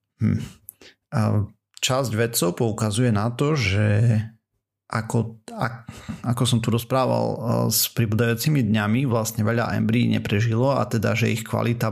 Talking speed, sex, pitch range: 125 wpm, male, 110-120 Hz